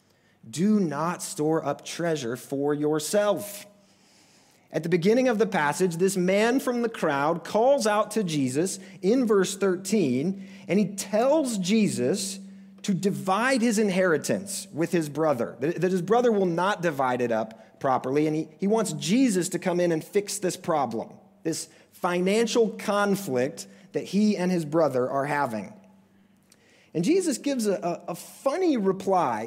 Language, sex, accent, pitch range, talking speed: English, male, American, 135-200 Hz, 150 wpm